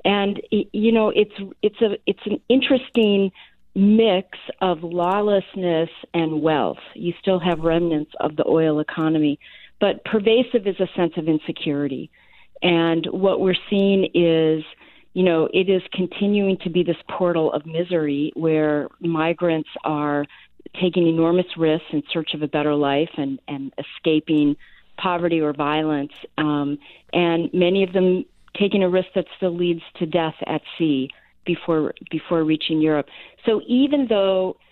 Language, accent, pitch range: English, American, 155-185 Hz